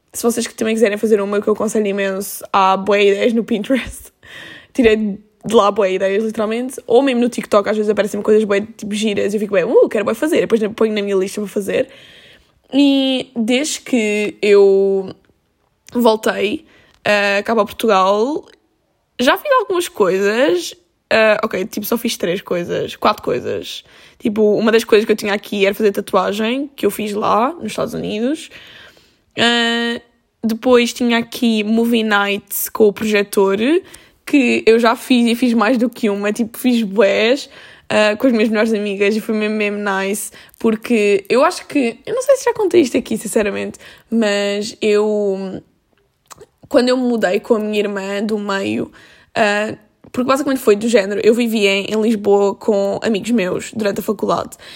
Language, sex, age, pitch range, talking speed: Portuguese, female, 10-29, 205-235 Hz, 180 wpm